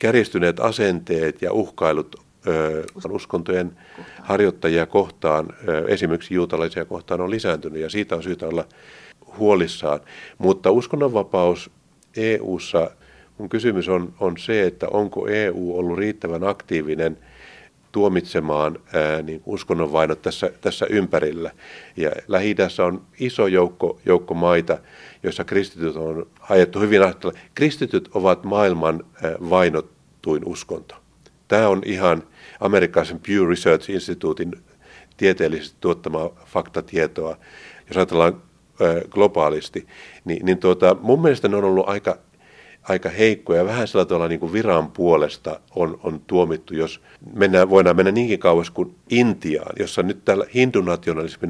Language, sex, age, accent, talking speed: Finnish, male, 50-69, native, 120 wpm